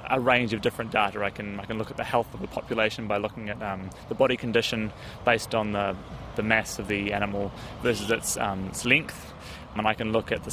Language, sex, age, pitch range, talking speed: English, male, 20-39, 105-135 Hz, 240 wpm